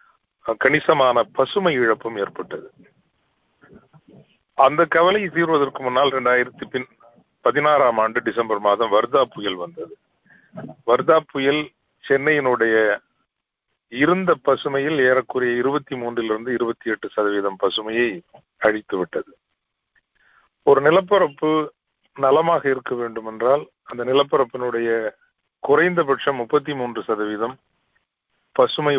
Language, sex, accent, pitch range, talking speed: Tamil, male, native, 110-145 Hz, 75 wpm